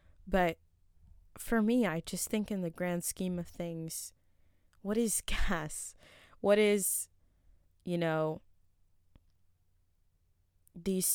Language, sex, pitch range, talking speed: English, female, 165-220 Hz, 110 wpm